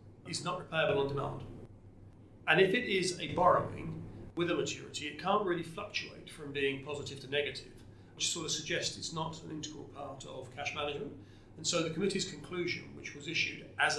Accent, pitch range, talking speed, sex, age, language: British, 115-150 Hz, 190 wpm, male, 40-59, English